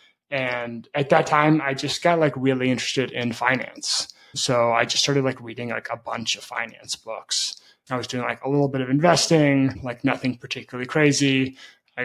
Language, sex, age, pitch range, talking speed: English, male, 20-39, 120-135 Hz, 190 wpm